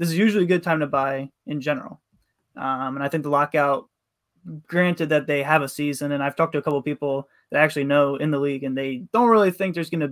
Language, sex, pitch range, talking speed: English, male, 140-170 Hz, 265 wpm